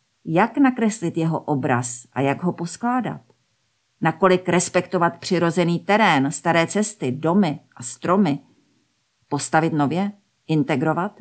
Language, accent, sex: Czech, native, female